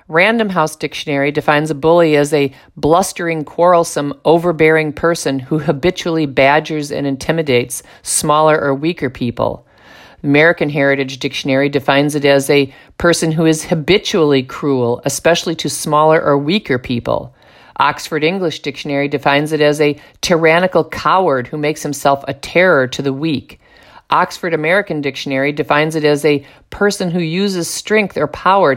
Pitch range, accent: 140-170 Hz, American